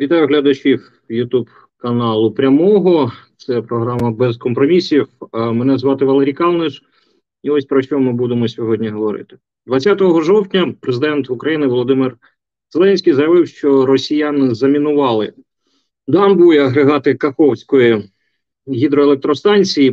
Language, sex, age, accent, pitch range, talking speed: Ukrainian, male, 40-59, native, 115-145 Hz, 110 wpm